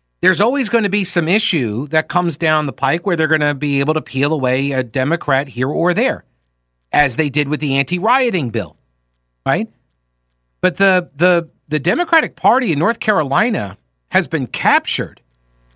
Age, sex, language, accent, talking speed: 50-69, male, English, American, 175 wpm